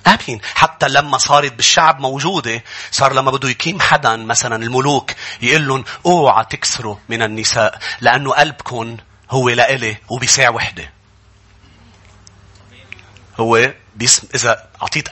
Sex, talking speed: male, 105 wpm